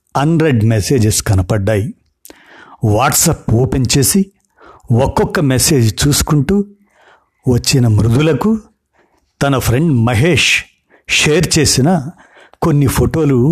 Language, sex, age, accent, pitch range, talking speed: Telugu, male, 50-69, native, 115-155 Hz, 80 wpm